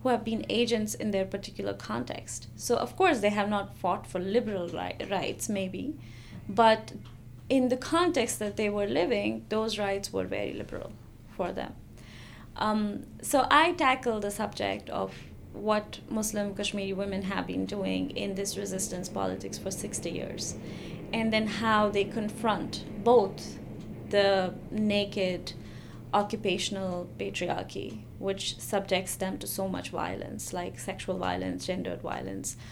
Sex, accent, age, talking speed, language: female, Indian, 20-39, 140 wpm, English